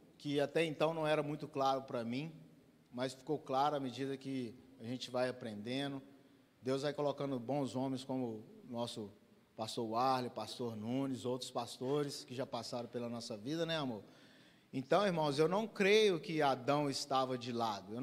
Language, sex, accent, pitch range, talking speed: Portuguese, male, Brazilian, 130-160 Hz, 175 wpm